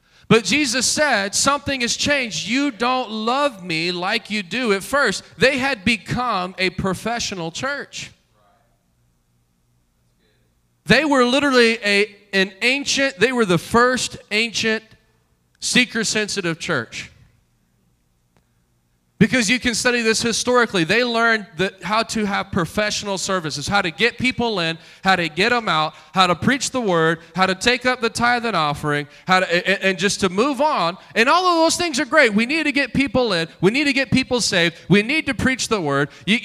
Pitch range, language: 165-245 Hz, English